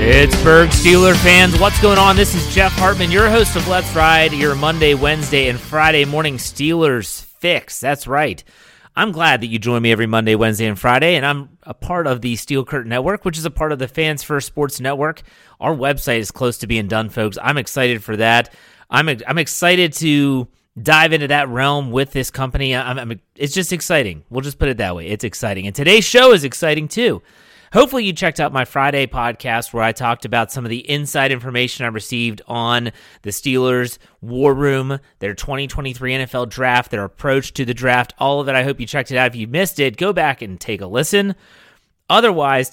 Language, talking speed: English, 205 wpm